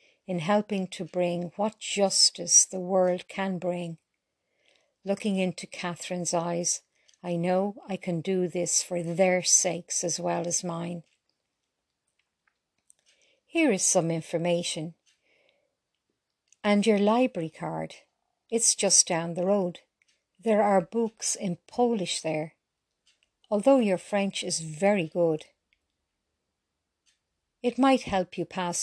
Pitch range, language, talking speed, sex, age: 170-200 Hz, English, 120 wpm, female, 50-69